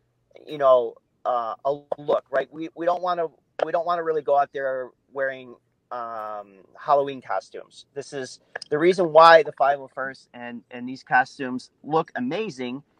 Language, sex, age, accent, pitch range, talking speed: English, male, 40-59, American, 120-160 Hz, 165 wpm